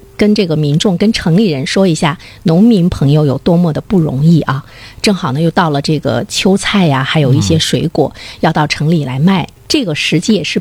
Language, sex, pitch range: Chinese, female, 145-215 Hz